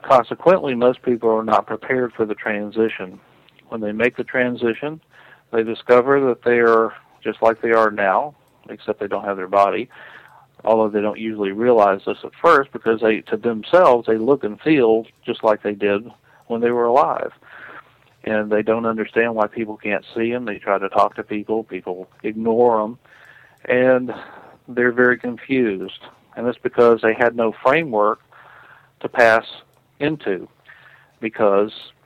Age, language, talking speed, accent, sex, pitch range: 50-69, English, 165 wpm, American, male, 105-120 Hz